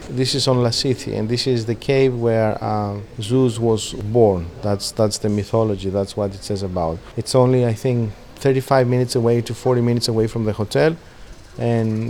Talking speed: 190 wpm